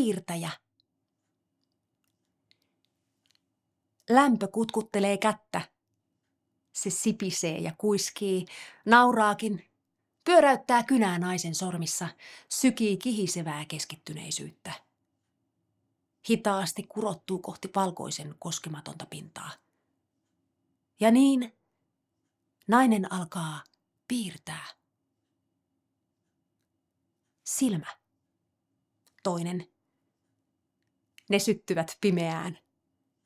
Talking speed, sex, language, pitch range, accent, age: 55 wpm, female, Finnish, 175-235 Hz, native, 30-49